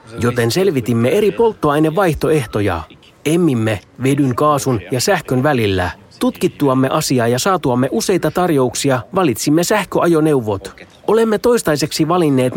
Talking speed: 100 wpm